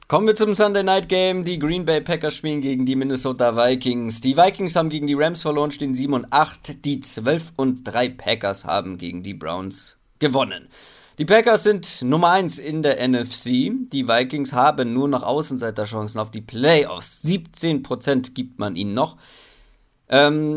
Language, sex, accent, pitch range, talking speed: German, male, German, 120-155 Hz, 165 wpm